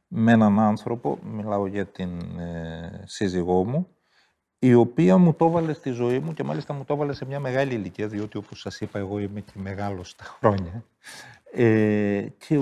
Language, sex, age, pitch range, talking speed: Greek, male, 50-69, 100-150 Hz, 180 wpm